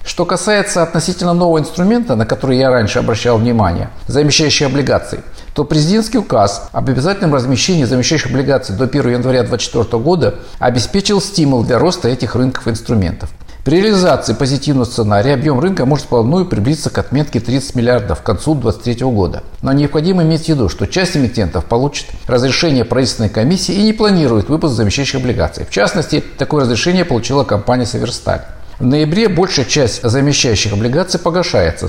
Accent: native